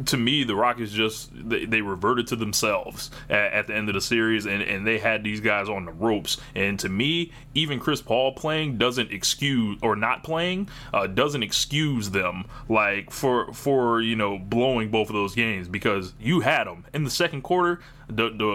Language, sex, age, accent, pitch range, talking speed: English, male, 20-39, American, 105-130 Hz, 205 wpm